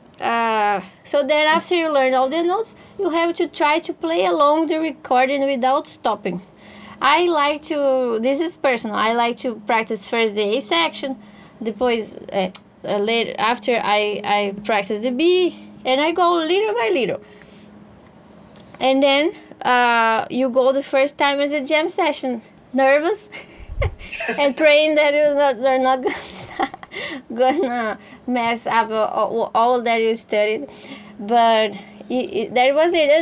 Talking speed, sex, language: 155 wpm, female, English